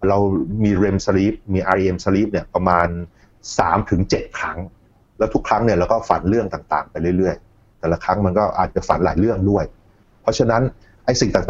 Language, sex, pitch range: Thai, male, 90-110 Hz